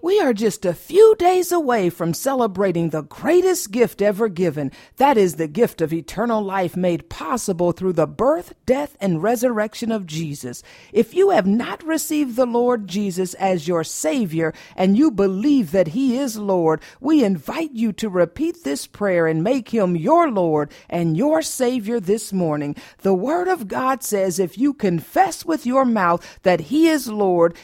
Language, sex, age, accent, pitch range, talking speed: English, female, 50-69, American, 180-270 Hz, 175 wpm